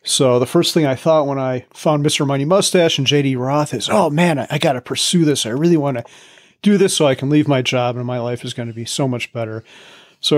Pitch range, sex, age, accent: 130-165 Hz, male, 40-59, American